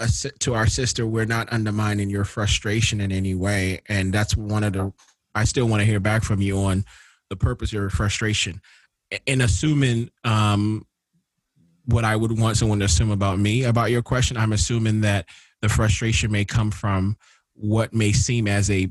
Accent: American